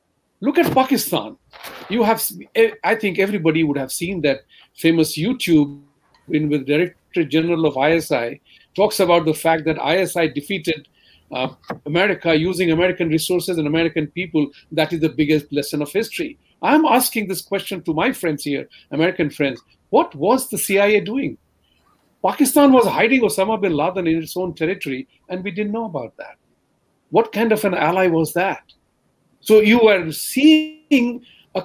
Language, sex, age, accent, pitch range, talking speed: English, male, 40-59, Indian, 160-225 Hz, 160 wpm